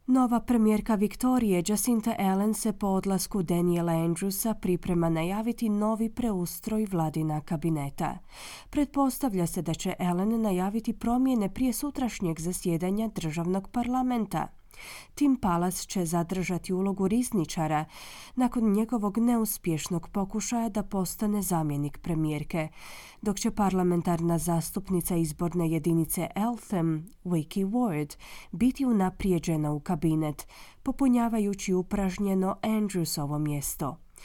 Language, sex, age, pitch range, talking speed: Croatian, female, 30-49, 165-220 Hz, 105 wpm